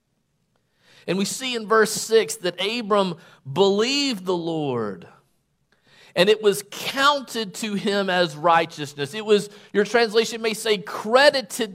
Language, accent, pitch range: English, American, 175-220 Hz